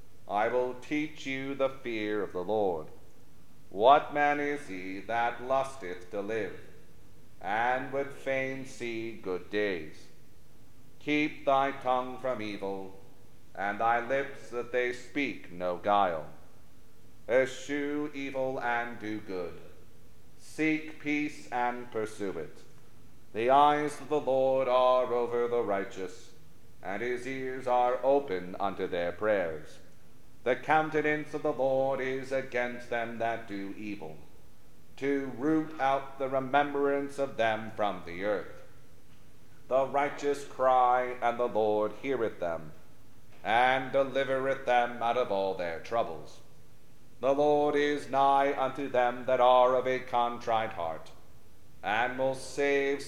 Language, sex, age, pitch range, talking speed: English, male, 40-59, 115-135 Hz, 130 wpm